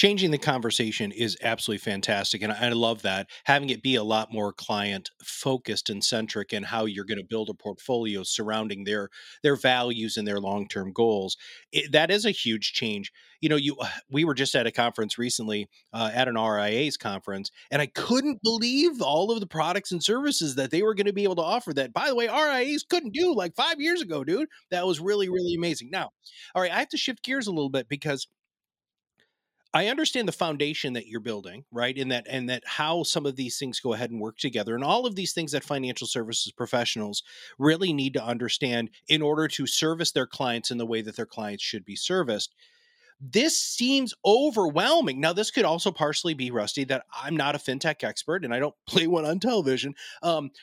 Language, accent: English, American